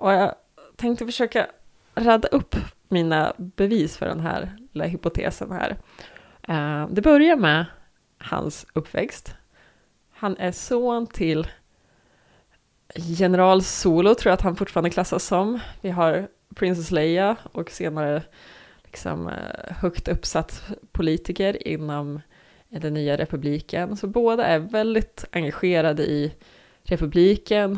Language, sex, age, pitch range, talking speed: Swedish, female, 20-39, 160-200 Hz, 115 wpm